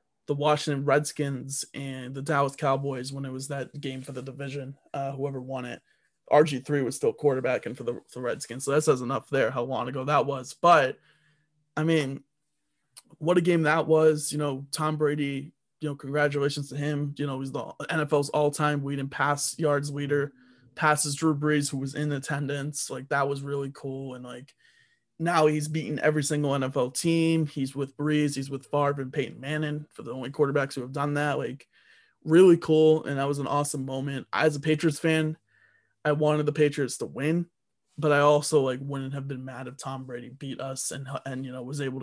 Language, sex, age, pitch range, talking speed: English, male, 20-39, 135-150 Hz, 205 wpm